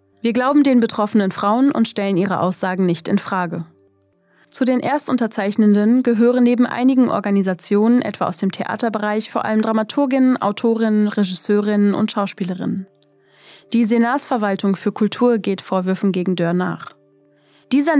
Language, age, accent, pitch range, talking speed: German, 20-39, German, 195-235 Hz, 135 wpm